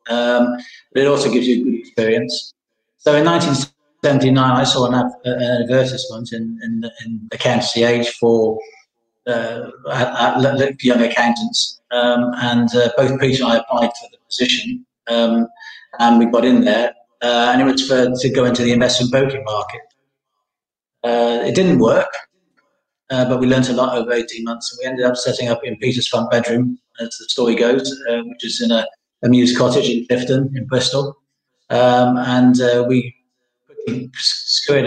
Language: English